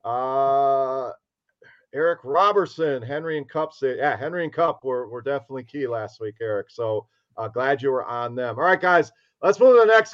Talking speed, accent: 195 wpm, American